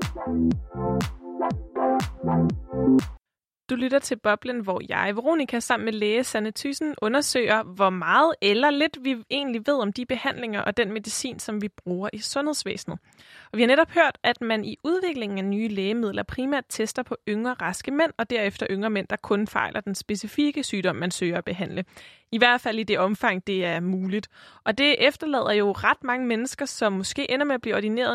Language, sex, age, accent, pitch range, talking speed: Danish, female, 20-39, native, 205-265 Hz, 185 wpm